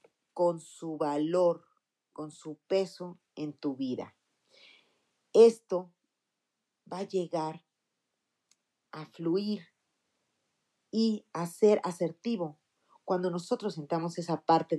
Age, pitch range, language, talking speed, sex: 40-59, 150-205 Hz, Spanish, 95 wpm, female